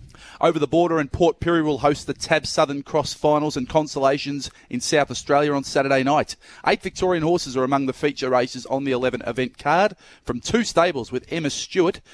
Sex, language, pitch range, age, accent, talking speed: male, English, 125-155 Hz, 30-49, Australian, 200 wpm